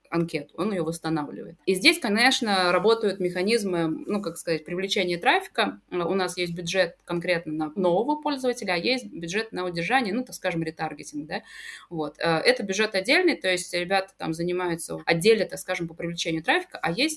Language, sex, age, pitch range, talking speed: Russian, female, 20-39, 170-220 Hz, 170 wpm